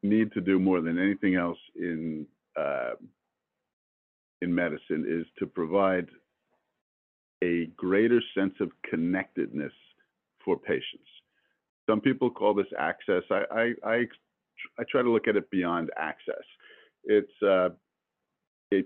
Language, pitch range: English, 85-105 Hz